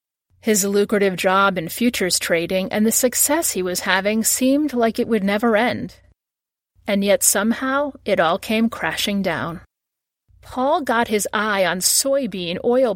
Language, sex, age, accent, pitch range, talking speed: English, female, 30-49, American, 190-245 Hz, 155 wpm